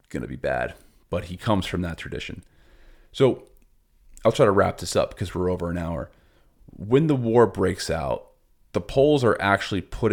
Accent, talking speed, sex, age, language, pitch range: American, 190 wpm, male, 30-49, English, 85-100 Hz